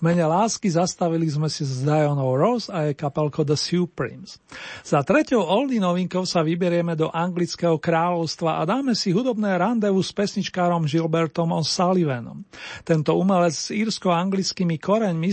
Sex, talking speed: male, 150 wpm